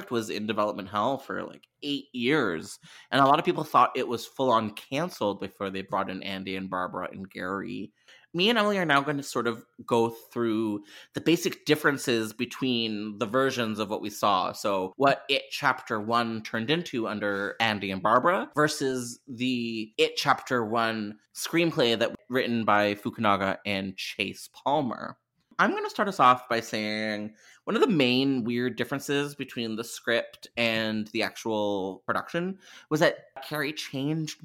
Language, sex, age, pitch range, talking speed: English, male, 30-49, 110-140 Hz, 170 wpm